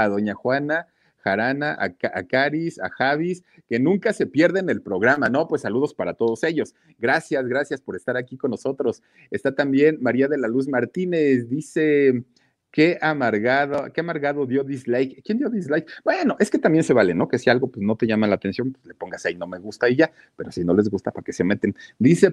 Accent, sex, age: Mexican, male, 40-59